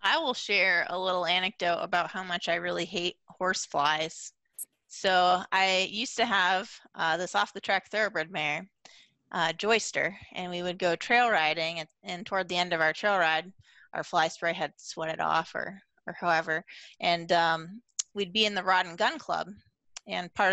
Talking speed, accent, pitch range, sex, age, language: 185 wpm, American, 175-215 Hz, female, 30-49, English